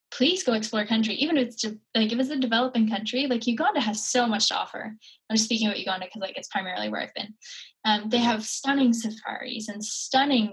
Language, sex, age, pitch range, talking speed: English, female, 10-29, 200-245 Hz, 220 wpm